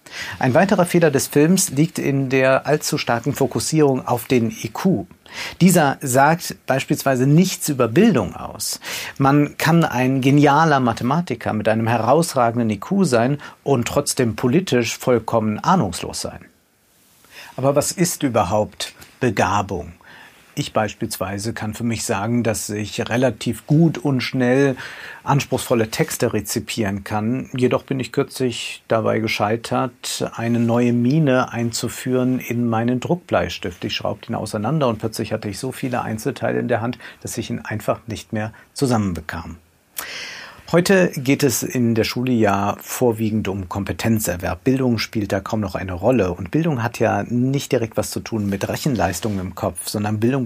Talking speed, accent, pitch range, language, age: 145 wpm, German, 110-135 Hz, German, 50-69